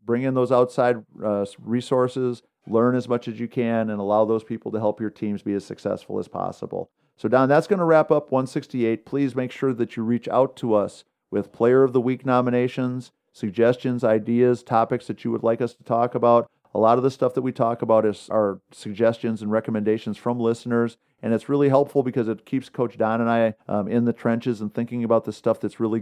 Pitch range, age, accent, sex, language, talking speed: 105-125 Hz, 50-69, American, male, English, 225 wpm